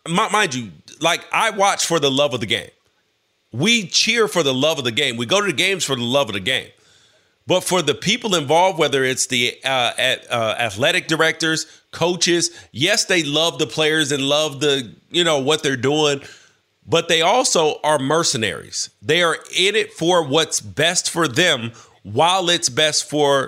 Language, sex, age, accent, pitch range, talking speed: English, male, 40-59, American, 145-190 Hz, 190 wpm